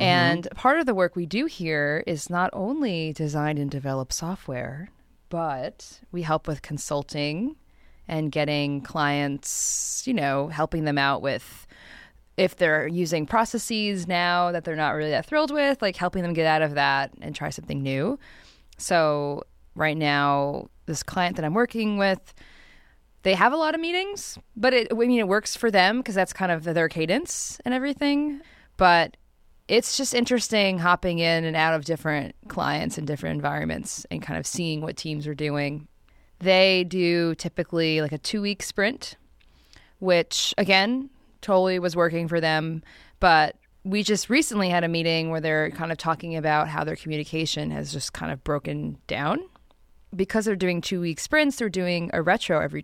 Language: English